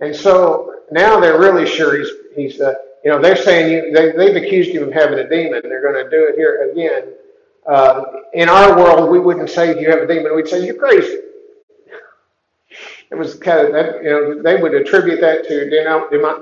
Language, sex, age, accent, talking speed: English, male, 50-69, American, 220 wpm